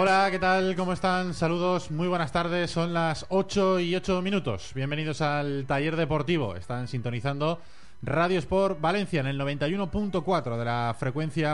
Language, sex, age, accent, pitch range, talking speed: Spanish, male, 20-39, Spanish, 115-160 Hz, 155 wpm